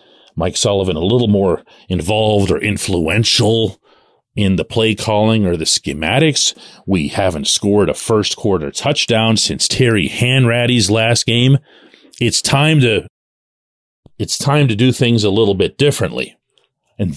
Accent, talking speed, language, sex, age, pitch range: American, 140 wpm, English, male, 40-59, 105-160 Hz